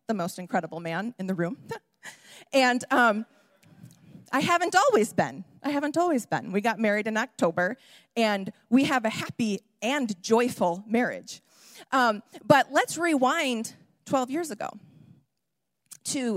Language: English